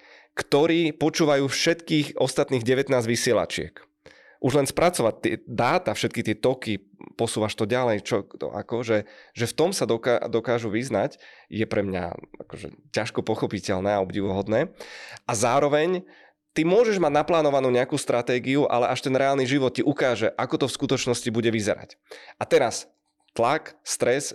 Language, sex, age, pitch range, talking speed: Czech, male, 20-39, 110-140 Hz, 150 wpm